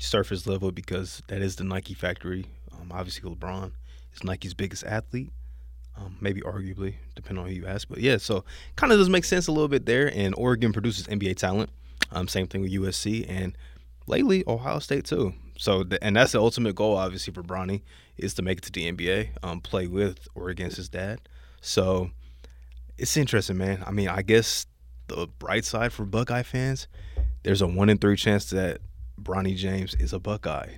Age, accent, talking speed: 20-39, American, 190 wpm